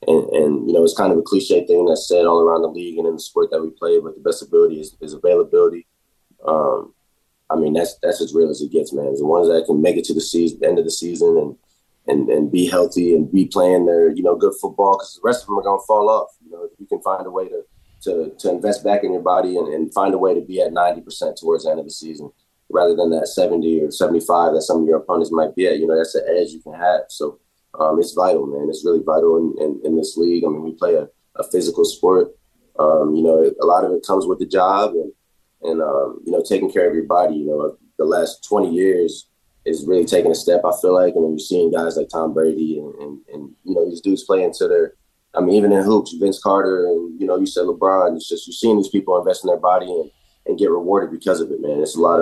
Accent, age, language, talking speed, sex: American, 20-39, English, 275 wpm, male